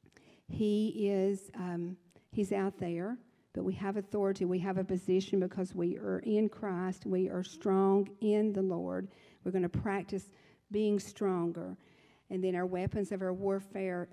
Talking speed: 160 wpm